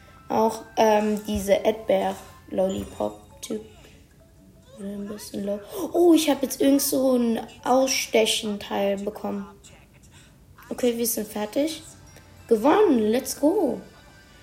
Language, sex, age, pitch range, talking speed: German, female, 20-39, 210-265 Hz, 90 wpm